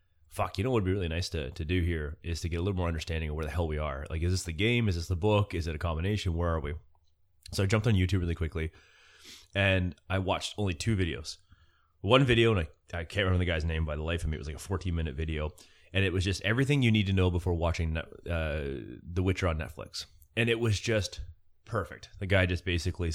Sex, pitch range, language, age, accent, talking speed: male, 85-100 Hz, English, 30-49, American, 260 wpm